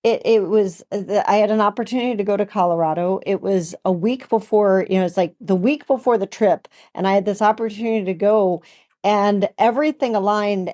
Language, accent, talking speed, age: English, American, 195 wpm, 40-59